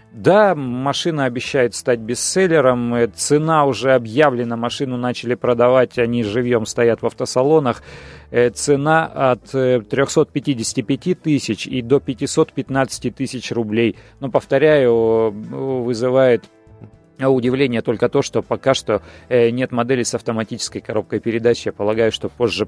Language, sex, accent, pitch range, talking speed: Russian, male, native, 115-135 Hz, 115 wpm